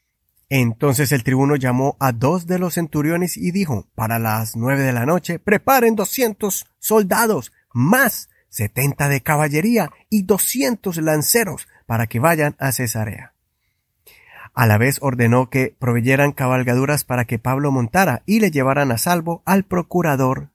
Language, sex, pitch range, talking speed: Spanish, male, 125-180 Hz, 145 wpm